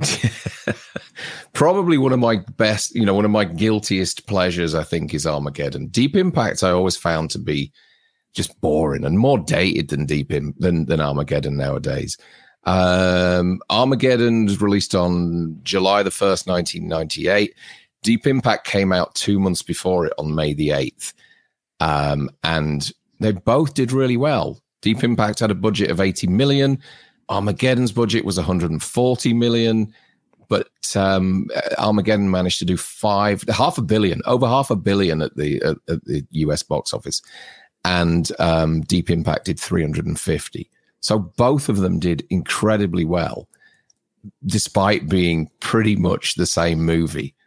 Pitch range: 80-110 Hz